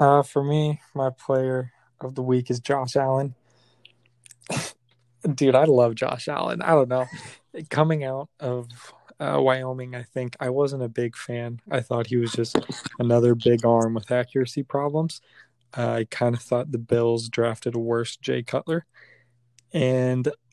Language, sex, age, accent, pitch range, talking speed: English, male, 20-39, American, 120-135 Hz, 160 wpm